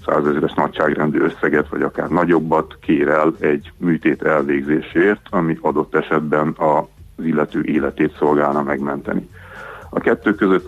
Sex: male